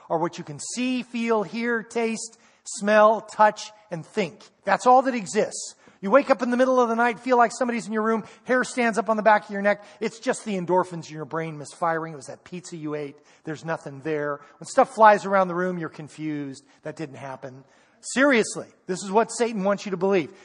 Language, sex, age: English, male, 40-59